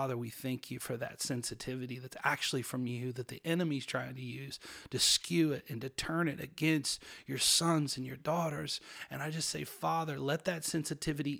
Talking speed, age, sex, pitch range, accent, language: 200 wpm, 30-49, male, 130-160 Hz, American, English